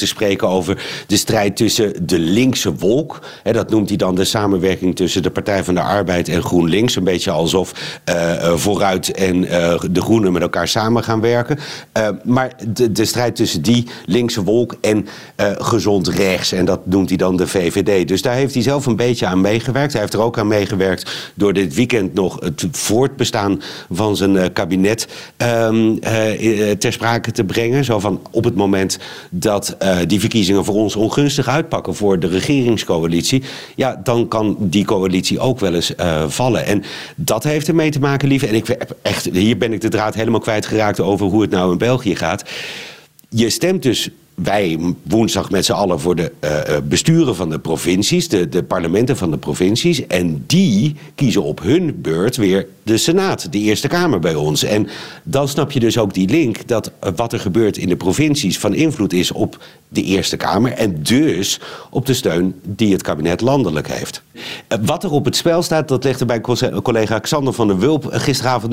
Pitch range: 95-120 Hz